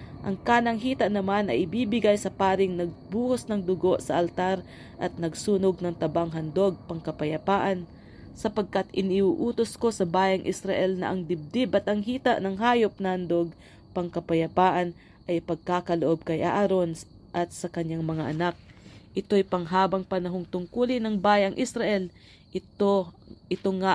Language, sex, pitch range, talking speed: English, female, 170-200 Hz, 140 wpm